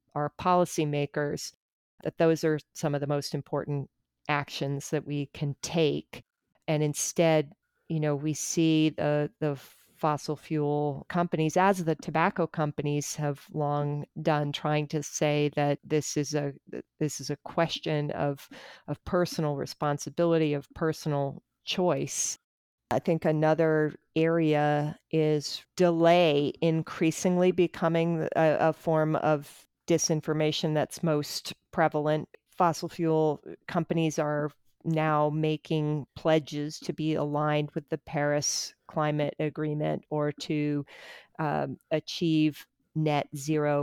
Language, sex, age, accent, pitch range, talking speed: English, female, 40-59, American, 145-165 Hz, 120 wpm